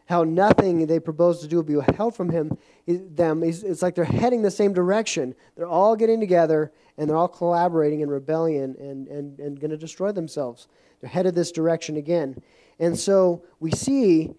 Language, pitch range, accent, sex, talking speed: English, 150-175 Hz, American, male, 190 wpm